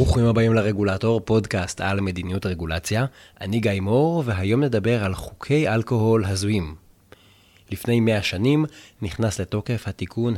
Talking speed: 125 wpm